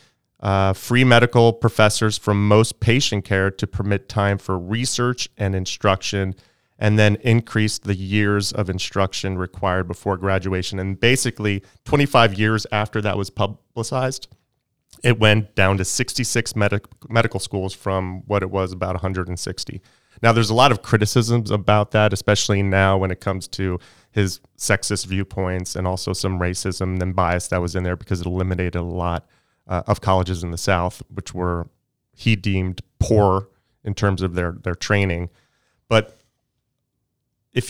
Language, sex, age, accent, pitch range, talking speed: English, male, 30-49, American, 95-115 Hz, 155 wpm